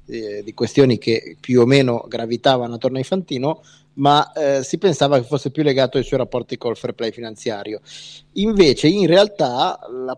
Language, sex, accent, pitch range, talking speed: Italian, male, native, 115-145 Hz, 170 wpm